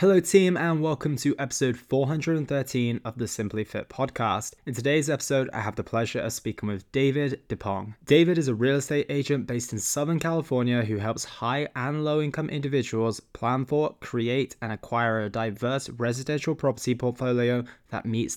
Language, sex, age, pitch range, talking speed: English, male, 20-39, 115-140 Hz, 175 wpm